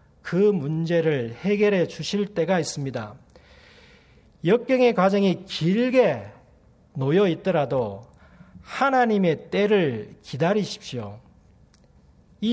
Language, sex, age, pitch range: Korean, male, 40-59, 130-210 Hz